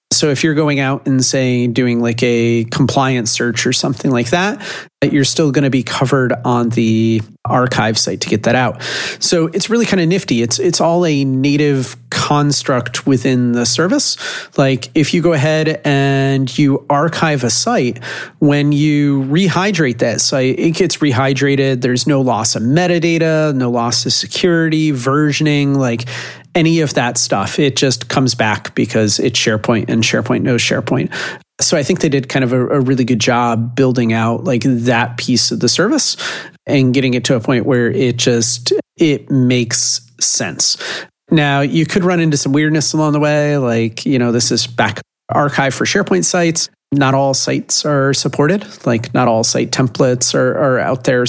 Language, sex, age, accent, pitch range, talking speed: English, male, 30-49, American, 120-150 Hz, 180 wpm